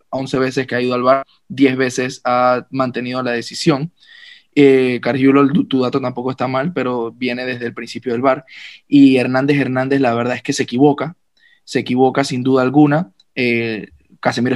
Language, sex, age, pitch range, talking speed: Spanish, male, 20-39, 125-150 Hz, 180 wpm